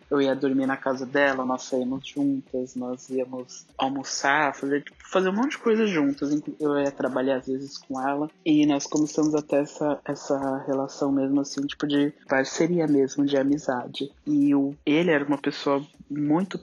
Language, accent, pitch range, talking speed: Portuguese, Brazilian, 135-150 Hz, 170 wpm